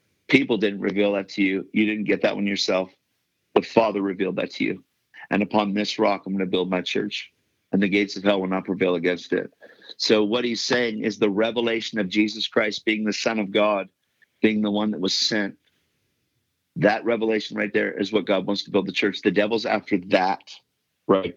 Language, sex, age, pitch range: English, male, 50-69, 100-110 Hz